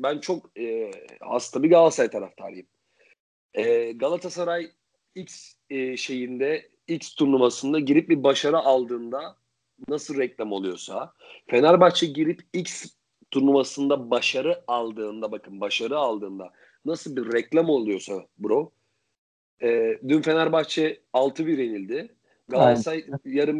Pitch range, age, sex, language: 130-175 Hz, 40-59, male, Turkish